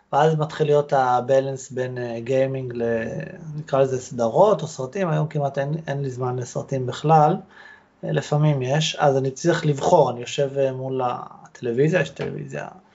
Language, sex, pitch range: Hebrew, male, 125-160 Hz